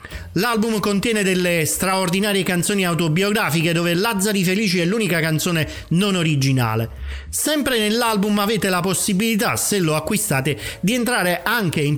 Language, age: Italian, 40-59